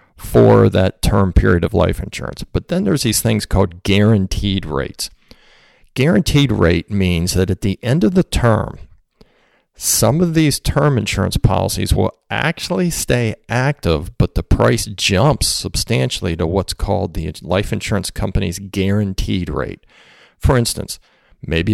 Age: 50-69